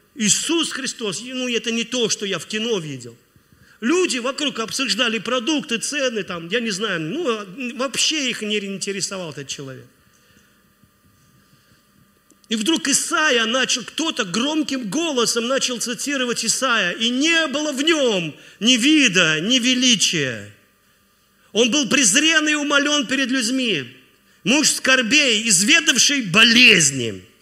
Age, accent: 40-59, native